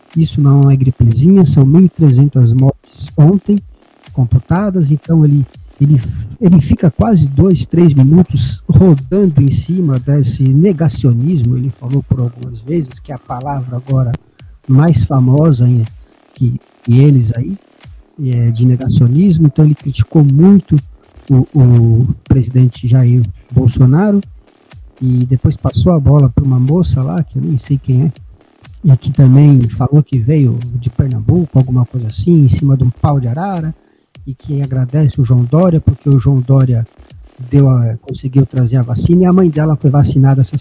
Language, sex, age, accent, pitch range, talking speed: Portuguese, male, 50-69, Brazilian, 125-155 Hz, 155 wpm